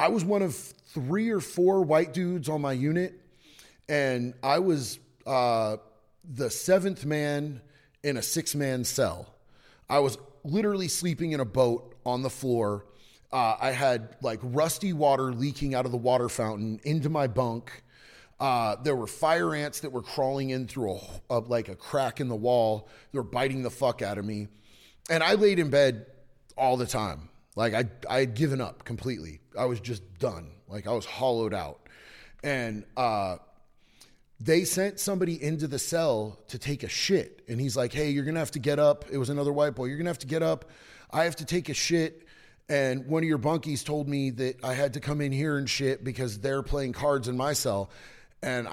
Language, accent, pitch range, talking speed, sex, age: English, American, 120-150 Hz, 200 wpm, male, 30-49